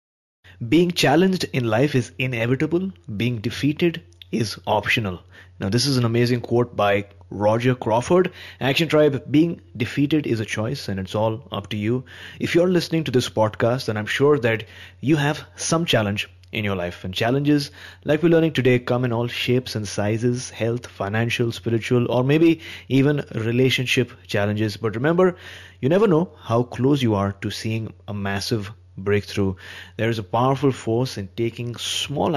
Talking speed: 170 wpm